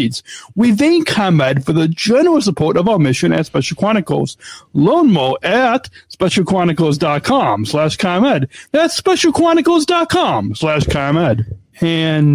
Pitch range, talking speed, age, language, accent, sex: 135-200 Hz, 115 wpm, 40-59, English, American, male